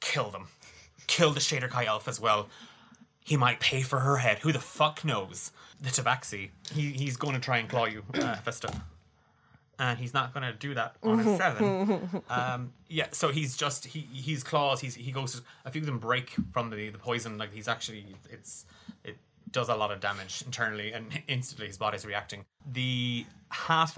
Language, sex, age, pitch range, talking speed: English, male, 20-39, 110-140 Hz, 200 wpm